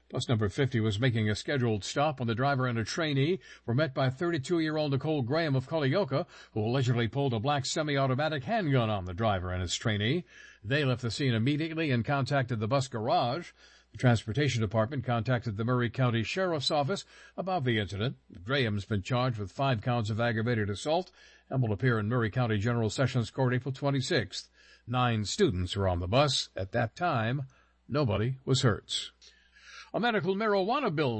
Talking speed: 180 wpm